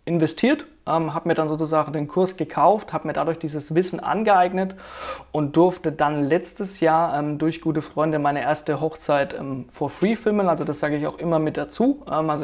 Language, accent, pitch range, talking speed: German, German, 150-180 Hz, 200 wpm